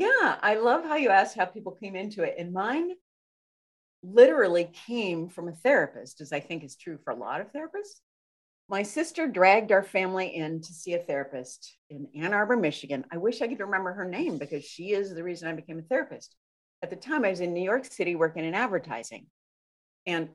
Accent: American